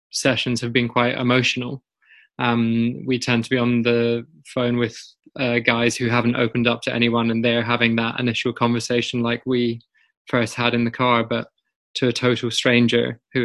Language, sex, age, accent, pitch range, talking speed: English, male, 20-39, British, 115-125 Hz, 185 wpm